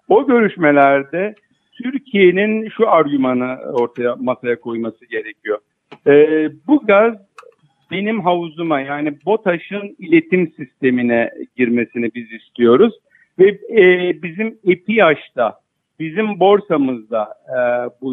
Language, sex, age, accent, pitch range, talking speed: Turkish, male, 50-69, native, 135-185 Hz, 95 wpm